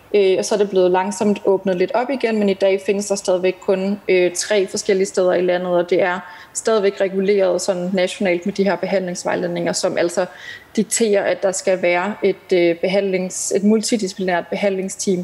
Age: 30-49